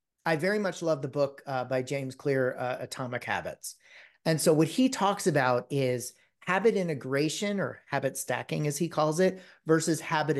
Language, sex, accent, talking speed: English, male, American, 180 wpm